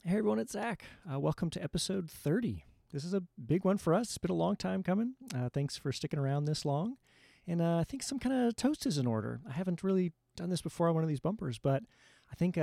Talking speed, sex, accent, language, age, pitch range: 255 wpm, male, American, English, 30-49, 130-180 Hz